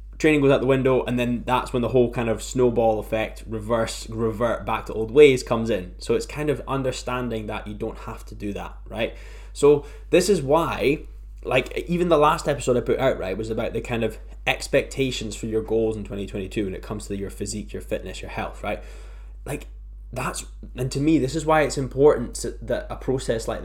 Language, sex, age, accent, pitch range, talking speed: English, male, 10-29, British, 110-130 Hz, 215 wpm